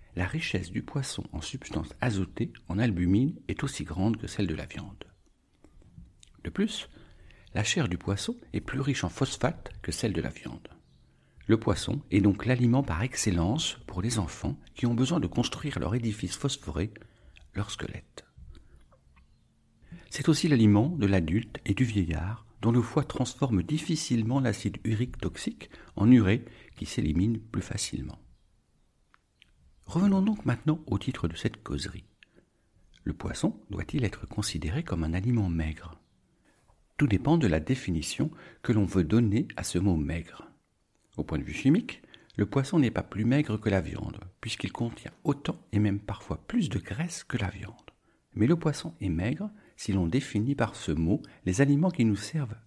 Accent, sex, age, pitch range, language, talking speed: French, male, 60-79, 95-130 Hz, French, 165 wpm